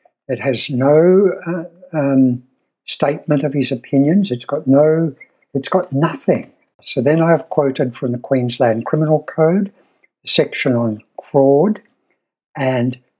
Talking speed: 135 wpm